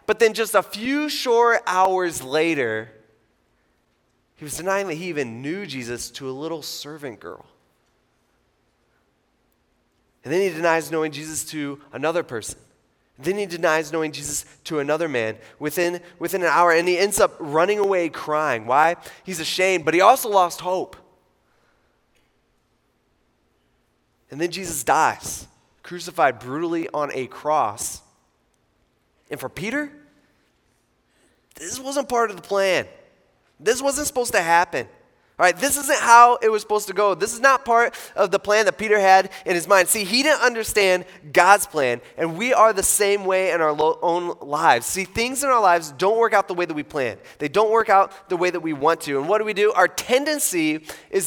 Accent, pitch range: American, 160-220 Hz